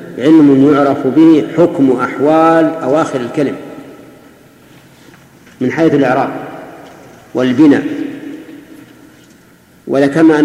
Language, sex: Arabic, male